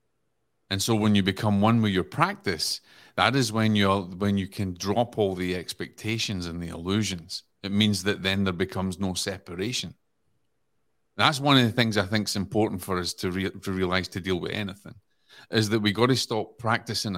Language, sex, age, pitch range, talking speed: English, male, 30-49, 95-110 Hz, 200 wpm